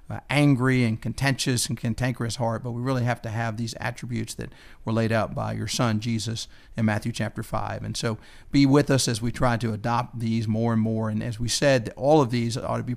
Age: 50-69